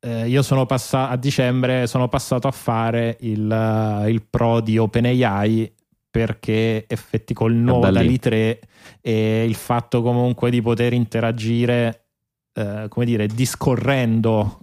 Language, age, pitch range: Italian, 20-39, 110-125 Hz